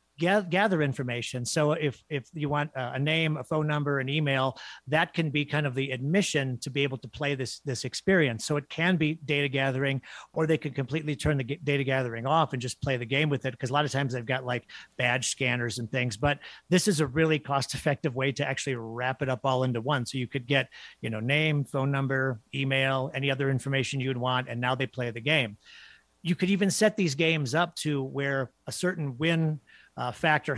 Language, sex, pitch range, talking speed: English, male, 130-155 Hz, 220 wpm